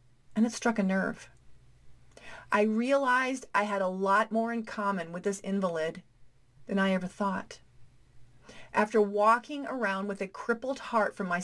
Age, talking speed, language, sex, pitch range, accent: 40-59, 155 wpm, English, female, 185-235 Hz, American